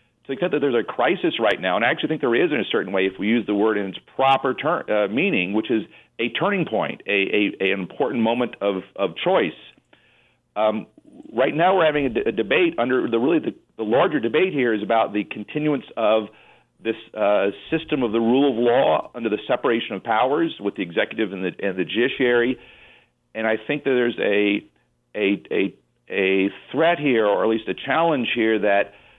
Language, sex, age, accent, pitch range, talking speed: English, male, 40-59, American, 100-130 Hz, 210 wpm